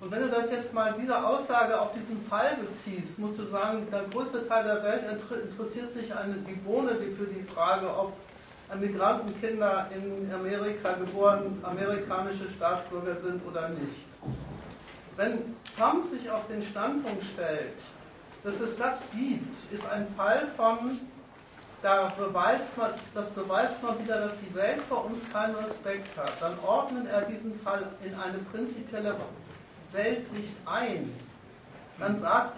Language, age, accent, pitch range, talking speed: German, 60-79, German, 195-230 Hz, 155 wpm